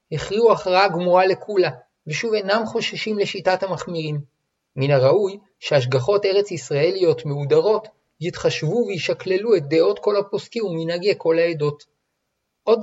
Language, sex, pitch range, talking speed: Hebrew, male, 160-200 Hz, 115 wpm